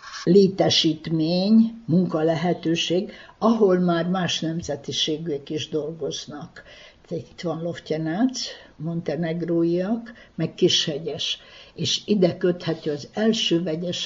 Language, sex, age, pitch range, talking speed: Hungarian, female, 60-79, 155-180 Hz, 85 wpm